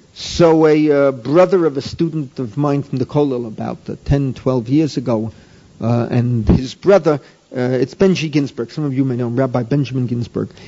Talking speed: 195 wpm